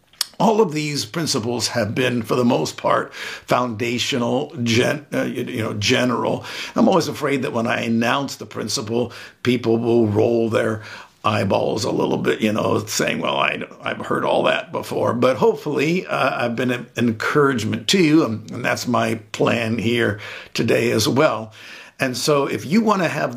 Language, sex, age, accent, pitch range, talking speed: English, male, 50-69, American, 110-130 Hz, 180 wpm